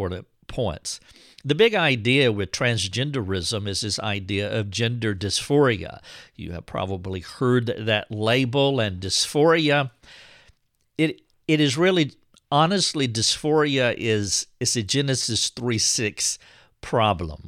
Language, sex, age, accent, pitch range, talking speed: English, male, 50-69, American, 100-130 Hz, 110 wpm